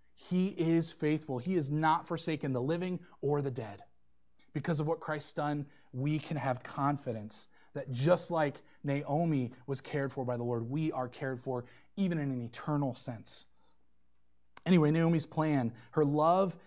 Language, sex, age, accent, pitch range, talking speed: English, male, 30-49, American, 135-190 Hz, 160 wpm